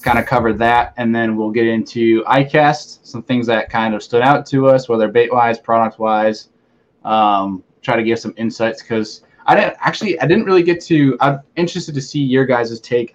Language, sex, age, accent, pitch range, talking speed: English, male, 20-39, American, 110-130 Hz, 210 wpm